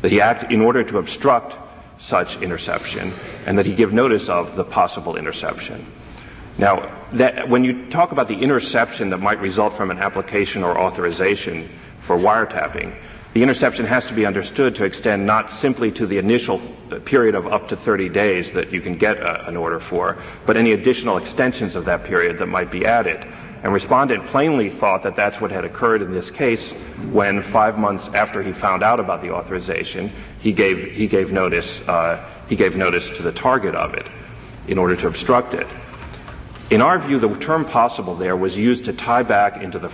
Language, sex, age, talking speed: English, male, 40-59, 190 wpm